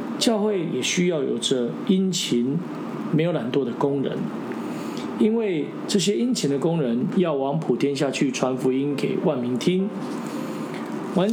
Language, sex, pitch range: Chinese, male, 145-195 Hz